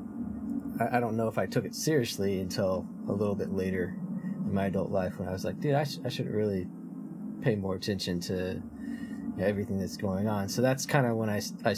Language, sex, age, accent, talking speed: English, male, 20-39, American, 215 wpm